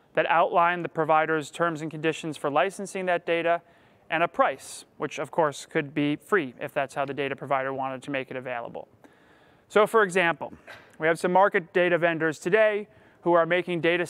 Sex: male